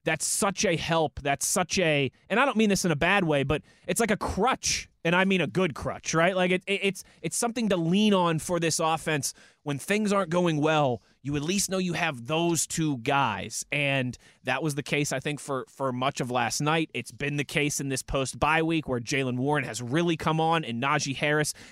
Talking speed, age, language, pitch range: 230 wpm, 20-39, English, 135-165 Hz